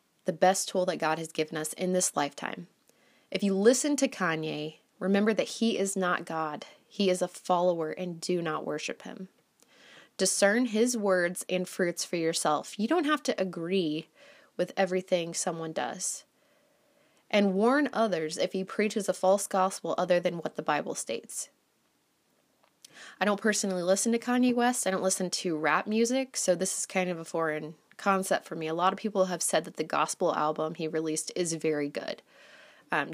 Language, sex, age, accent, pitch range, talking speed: English, female, 20-39, American, 175-225 Hz, 185 wpm